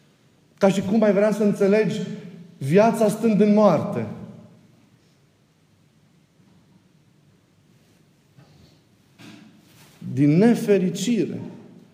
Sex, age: male, 50-69